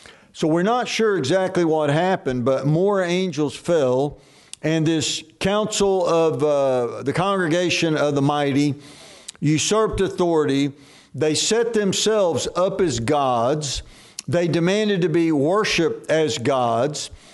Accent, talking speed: American, 125 wpm